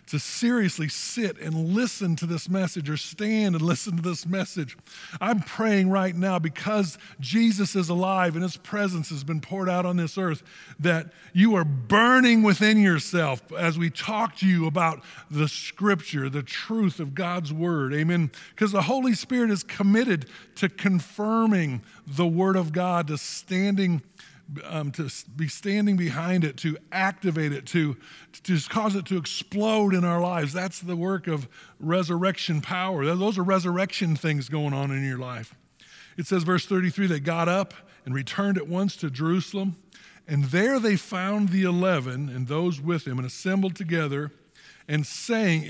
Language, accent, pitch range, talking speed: English, American, 155-195 Hz, 170 wpm